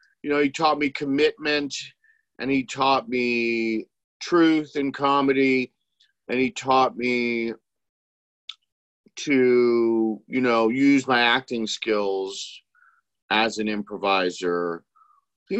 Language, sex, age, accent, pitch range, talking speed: English, male, 50-69, American, 110-145 Hz, 110 wpm